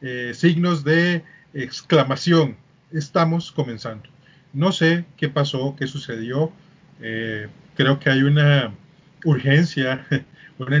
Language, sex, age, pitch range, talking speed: Spanish, male, 30-49, 130-155 Hz, 105 wpm